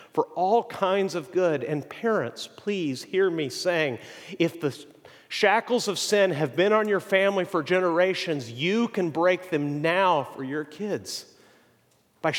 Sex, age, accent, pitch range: male, 40-59, American, 130-180 Hz